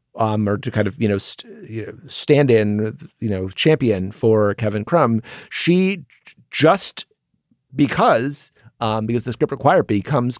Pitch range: 110-150 Hz